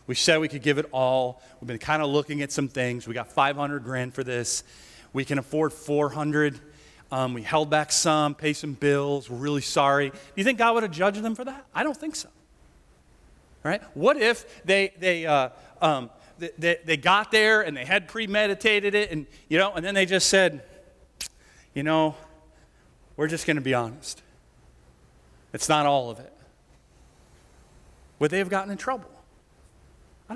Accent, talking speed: American, 190 wpm